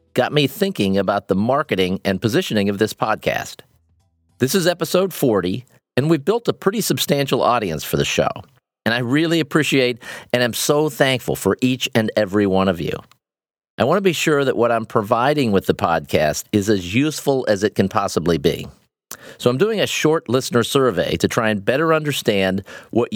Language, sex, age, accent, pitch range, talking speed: English, male, 40-59, American, 100-145 Hz, 190 wpm